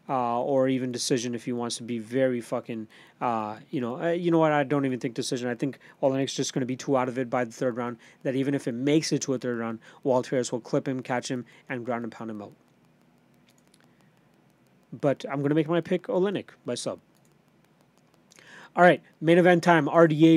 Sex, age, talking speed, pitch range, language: male, 30-49, 225 wpm, 130-155 Hz, English